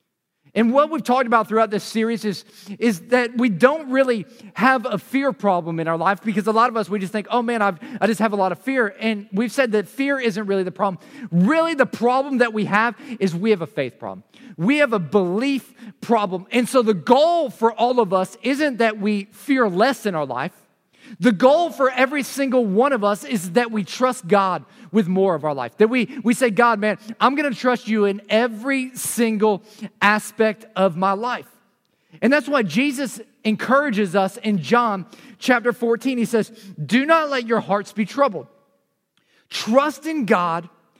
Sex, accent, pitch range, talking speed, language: male, American, 205-255 Hz, 200 wpm, English